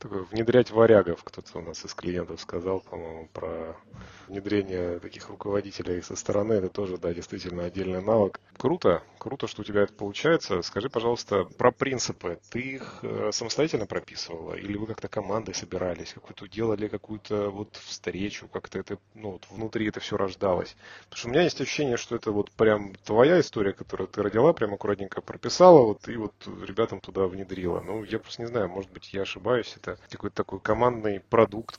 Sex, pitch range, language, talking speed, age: male, 95-120 Hz, Russian, 170 wpm, 30-49